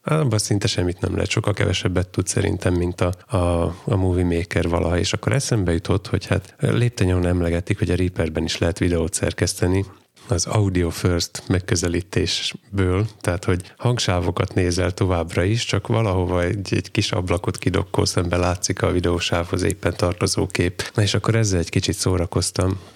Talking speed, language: 165 wpm, Hungarian